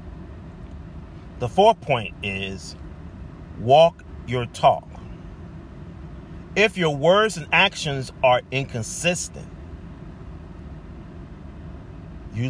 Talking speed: 70 wpm